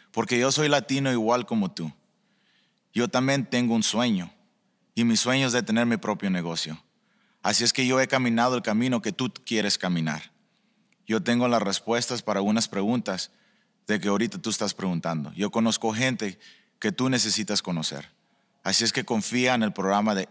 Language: English